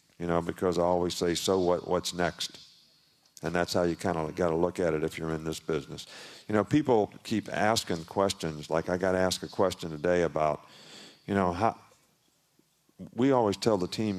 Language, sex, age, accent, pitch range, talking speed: English, male, 50-69, American, 85-100 Hz, 205 wpm